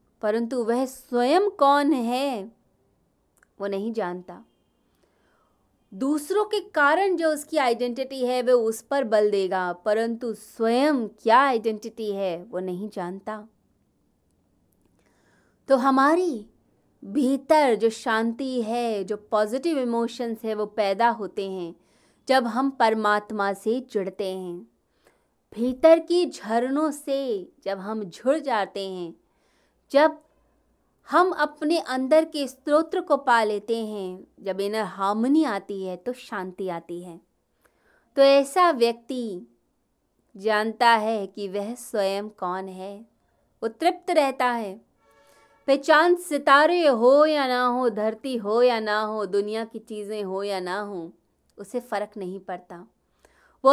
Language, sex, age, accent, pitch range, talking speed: Hindi, female, 20-39, native, 205-275 Hz, 125 wpm